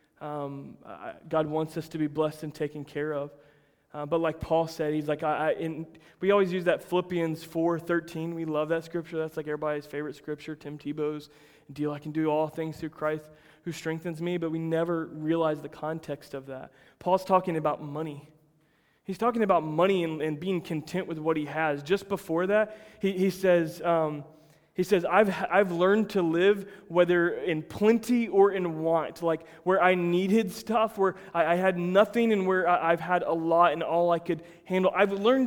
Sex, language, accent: male, English, American